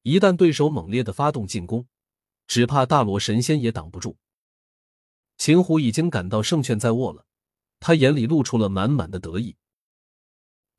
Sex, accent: male, native